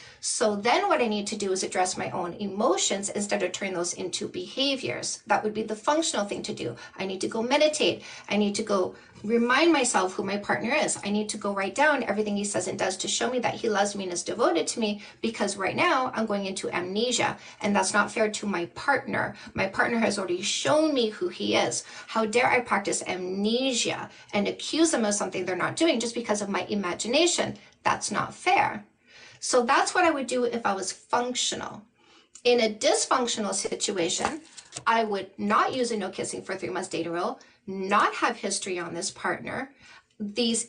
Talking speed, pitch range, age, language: 210 wpm, 200-245 Hz, 40-59, English